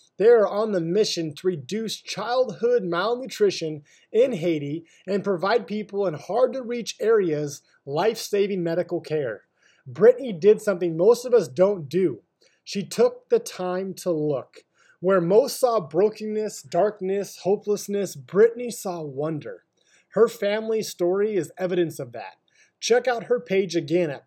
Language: English